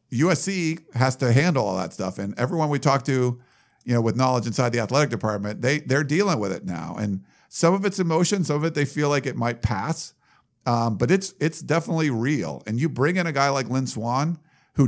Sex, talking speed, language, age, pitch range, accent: male, 220 wpm, English, 50-69, 115-150 Hz, American